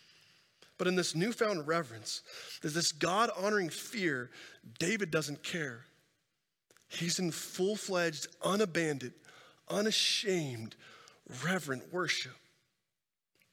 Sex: male